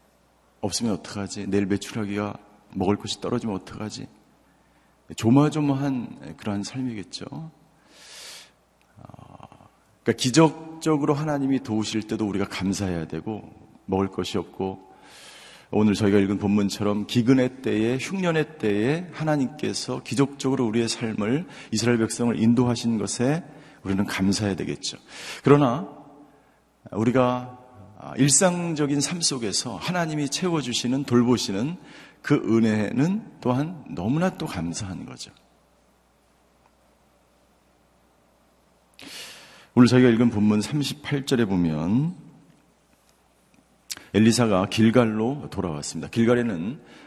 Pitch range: 100-140 Hz